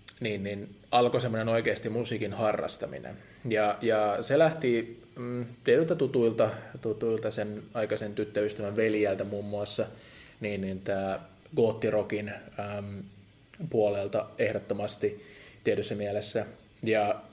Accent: native